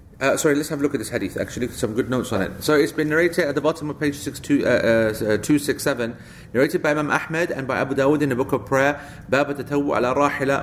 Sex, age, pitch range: male, 40-59, 115-140 Hz